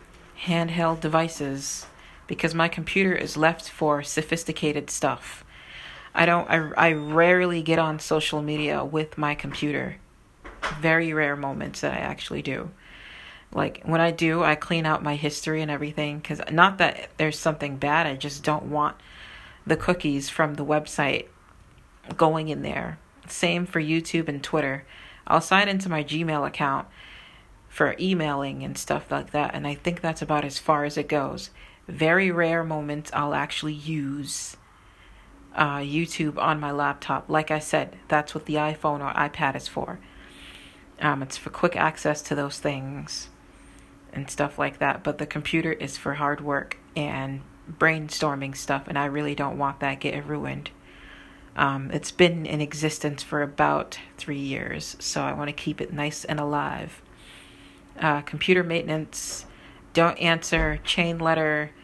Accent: American